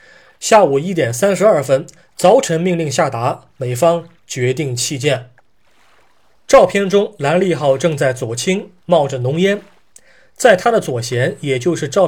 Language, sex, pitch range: Chinese, male, 130-185 Hz